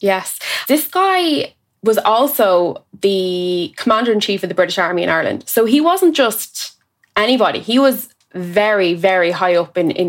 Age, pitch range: 20-39, 180-220 Hz